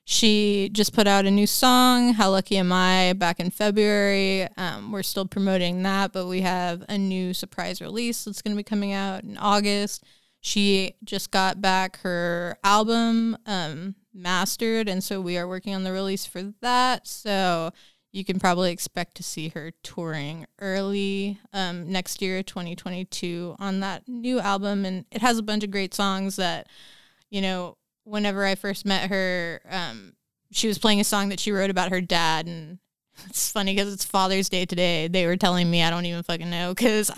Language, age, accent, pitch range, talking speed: English, 20-39, American, 180-205 Hz, 185 wpm